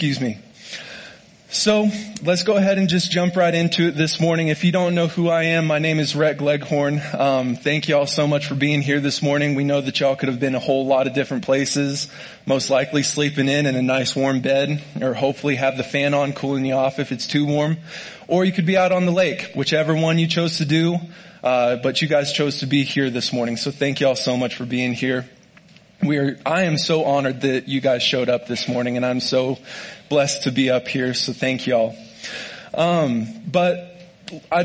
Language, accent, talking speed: English, American, 230 wpm